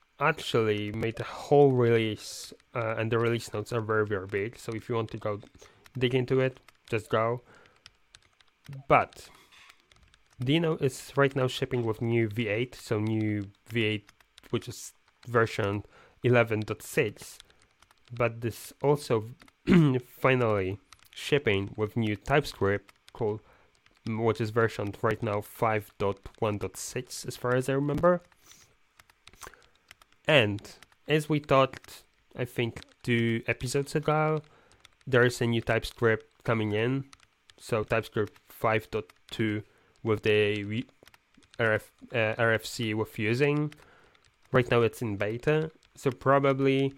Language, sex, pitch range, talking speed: Polish, male, 110-130 Hz, 120 wpm